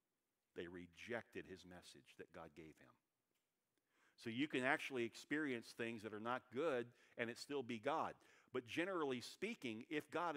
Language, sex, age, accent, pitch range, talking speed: English, male, 50-69, American, 110-145 Hz, 160 wpm